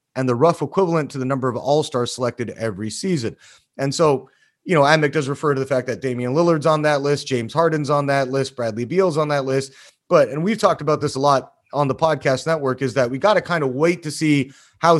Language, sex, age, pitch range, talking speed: English, male, 30-49, 130-155 Hz, 245 wpm